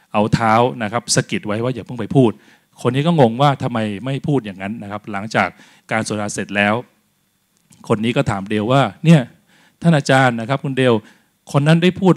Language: Thai